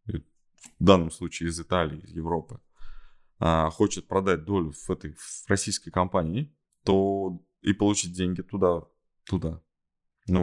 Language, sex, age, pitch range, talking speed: Russian, male, 20-39, 85-110 Hz, 120 wpm